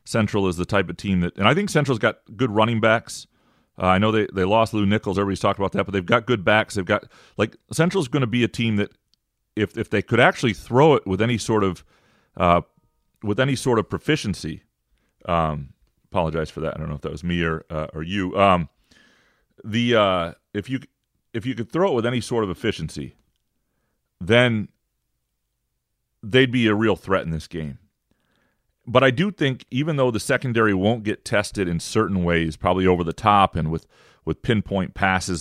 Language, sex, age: English, male, 40-59